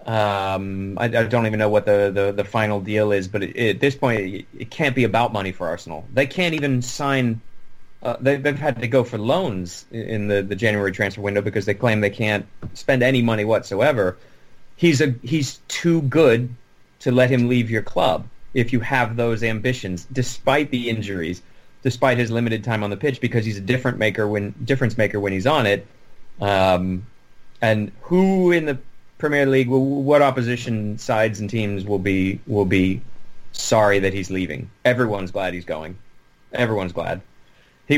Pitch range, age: 100-125 Hz, 30-49